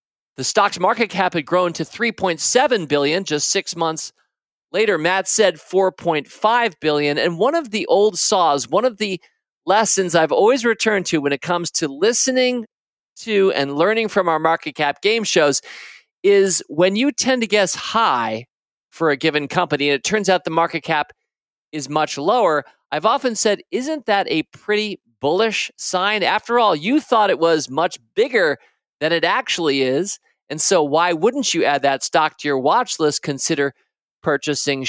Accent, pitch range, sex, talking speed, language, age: American, 150-205 Hz, male, 175 wpm, English, 40-59